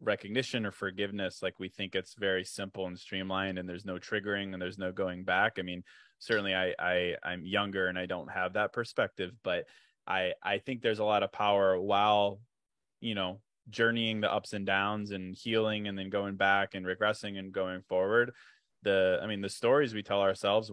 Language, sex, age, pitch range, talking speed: English, male, 20-39, 95-110 Hz, 200 wpm